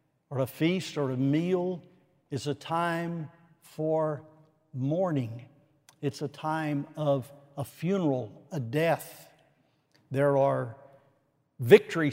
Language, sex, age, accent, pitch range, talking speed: English, male, 60-79, American, 140-160 Hz, 110 wpm